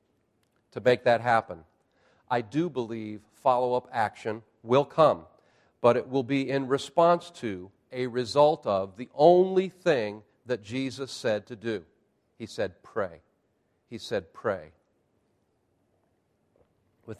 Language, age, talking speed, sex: English, 40-59, 125 wpm, male